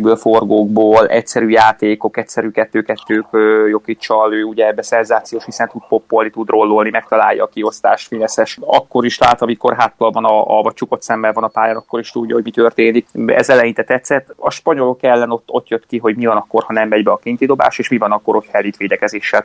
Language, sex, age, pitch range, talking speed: Hungarian, male, 20-39, 110-120 Hz, 200 wpm